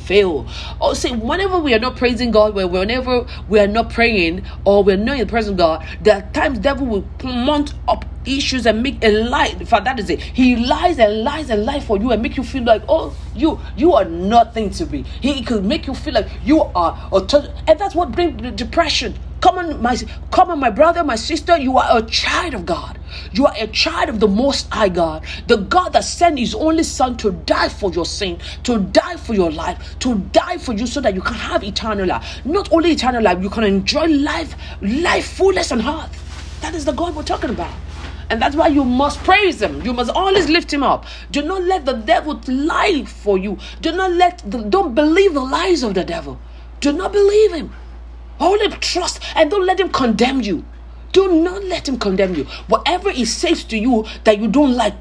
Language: English